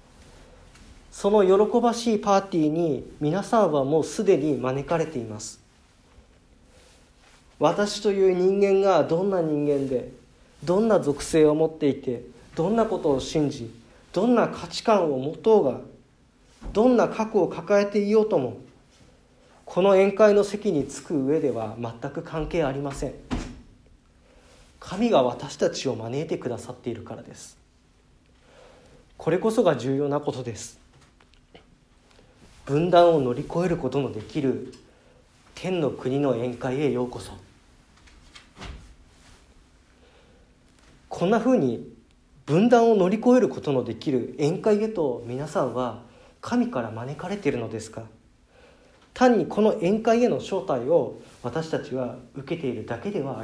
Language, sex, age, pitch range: Japanese, male, 40-59, 125-200 Hz